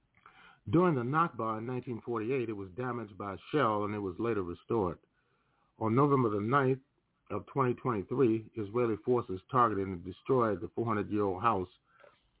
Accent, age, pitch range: American, 40-59, 100-130 Hz